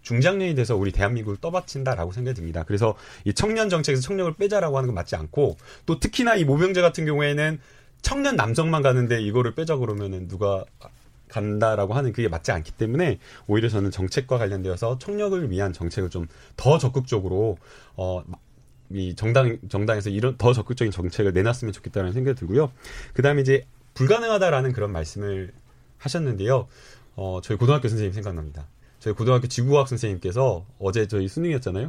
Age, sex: 30-49, male